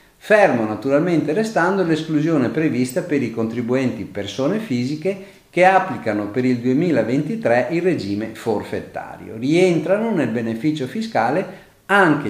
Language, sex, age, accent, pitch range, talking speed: Italian, male, 50-69, native, 115-175 Hz, 110 wpm